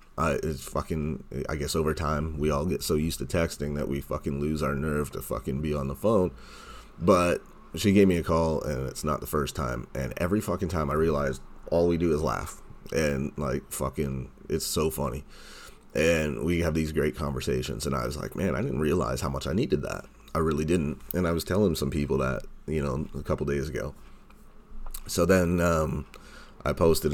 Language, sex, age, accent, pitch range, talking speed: English, male, 30-49, American, 70-80 Hz, 215 wpm